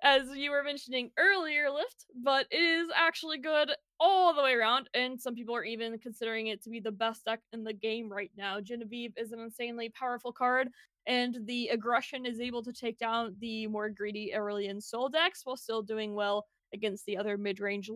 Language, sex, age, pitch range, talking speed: English, female, 20-39, 220-280 Hz, 200 wpm